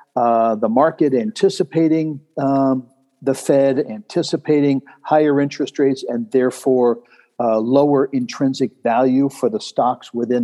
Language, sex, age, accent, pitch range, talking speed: English, male, 50-69, American, 125-145 Hz, 120 wpm